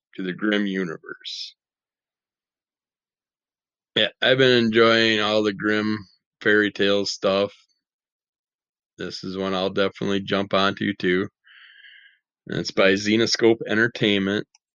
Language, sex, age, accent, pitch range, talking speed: English, male, 20-39, American, 95-115 Hz, 110 wpm